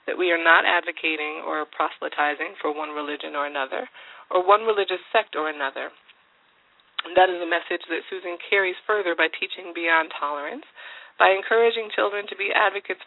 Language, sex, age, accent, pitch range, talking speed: English, female, 30-49, American, 155-190 Hz, 170 wpm